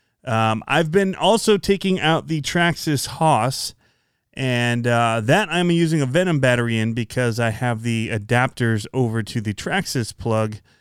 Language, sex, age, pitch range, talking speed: English, male, 30-49, 115-150 Hz, 155 wpm